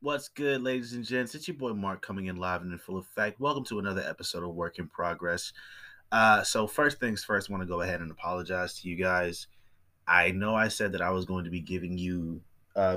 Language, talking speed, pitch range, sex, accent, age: English, 240 wpm, 90-105 Hz, male, American, 20-39